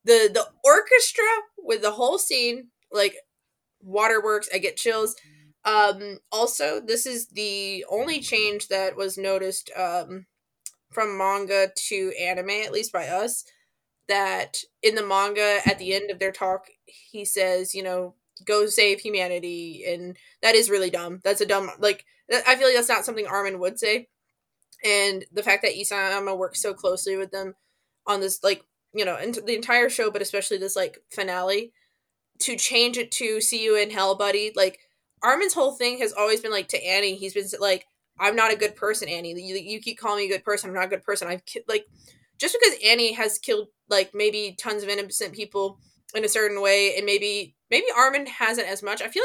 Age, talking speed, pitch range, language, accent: 20-39, 195 wpm, 195-230 Hz, English, American